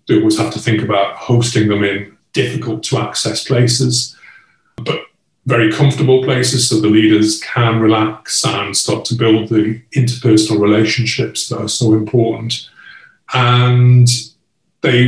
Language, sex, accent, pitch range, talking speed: English, male, British, 105-125 Hz, 130 wpm